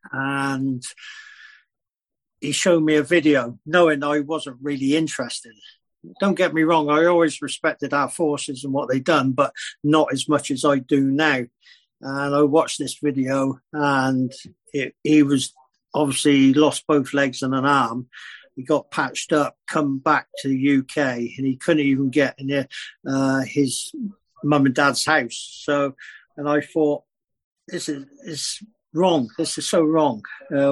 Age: 50-69